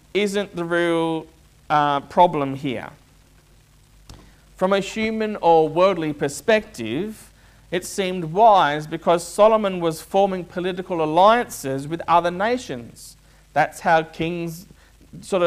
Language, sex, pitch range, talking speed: English, male, 145-210 Hz, 110 wpm